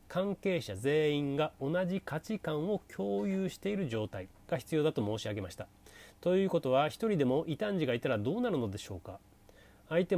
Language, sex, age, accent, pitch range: Japanese, male, 30-49, native, 105-160 Hz